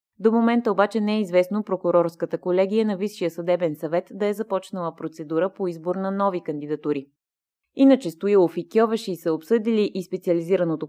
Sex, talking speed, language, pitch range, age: female, 160 wpm, Bulgarian, 165-210 Hz, 20-39